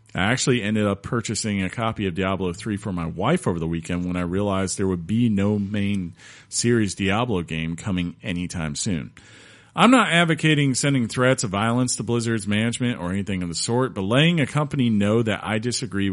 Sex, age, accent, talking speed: male, 40-59, American, 195 wpm